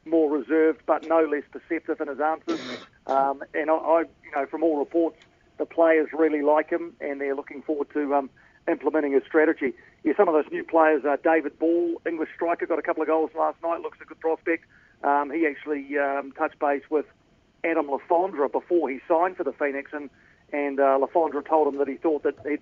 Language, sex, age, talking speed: English, male, 50-69, 215 wpm